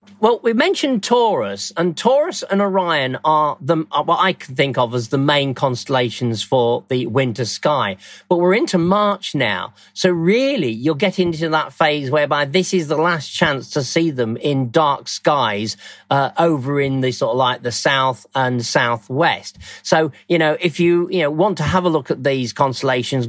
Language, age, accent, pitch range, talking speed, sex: English, 40-59, British, 130-180 Hz, 190 wpm, male